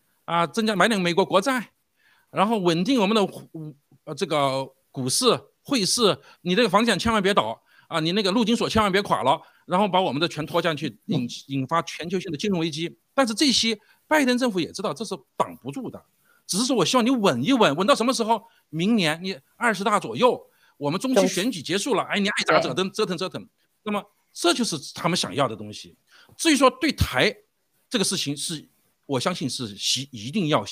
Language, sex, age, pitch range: Chinese, male, 50-69, 155-230 Hz